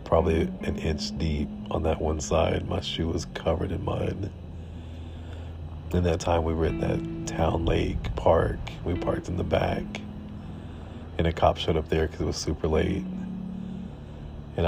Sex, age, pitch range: male, 40-59, 80-85 Hz